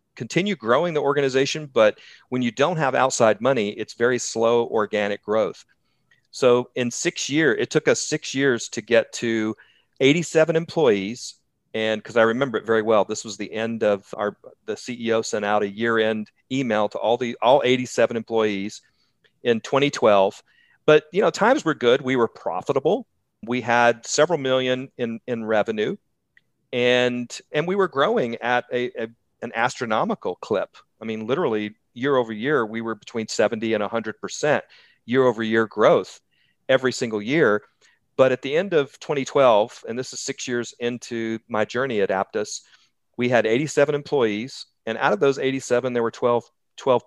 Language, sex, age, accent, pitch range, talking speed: English, male, 40-59, American, 110-135 Hz, 170 wpm